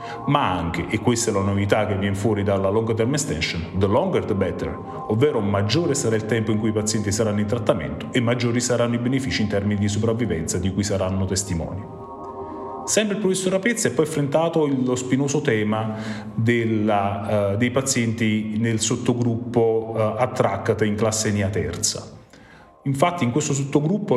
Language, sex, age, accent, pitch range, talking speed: Italian, male, 30-49, native, 105-130 Hz, 170 wpm